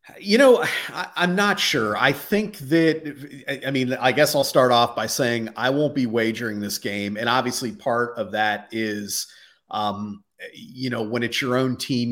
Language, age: English, 30-49